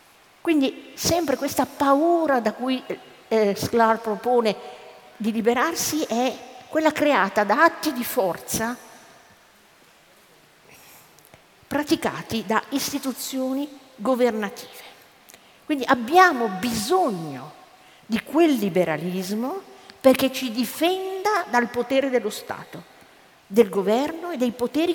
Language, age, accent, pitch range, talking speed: Italian, 50-69, native, 200-270 Hz, 95 wpm